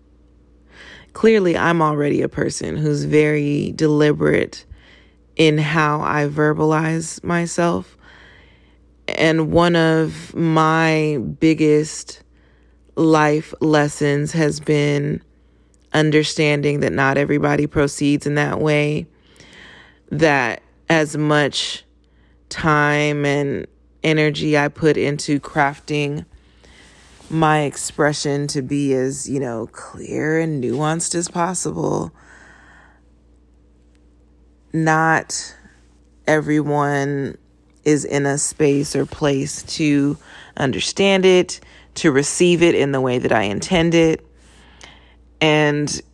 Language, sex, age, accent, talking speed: English, female, 20-39, American, 95 wpm